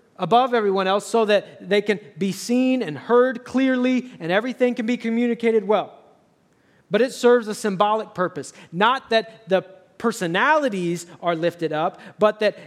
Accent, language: American, English